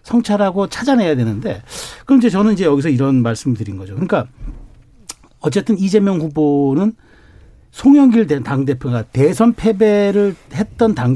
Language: Korean